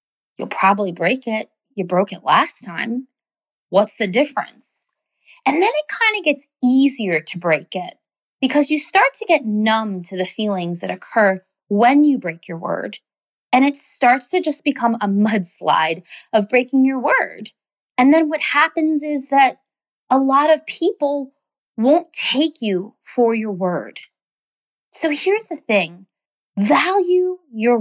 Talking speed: 155 wpm